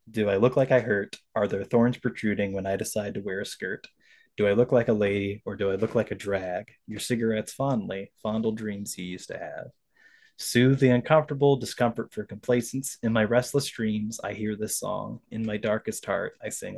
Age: 20-39